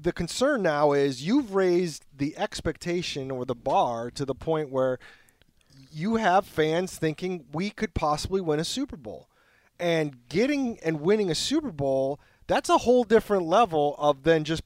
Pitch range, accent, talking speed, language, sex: 135-180 Hz, American, 170 wpm, English, male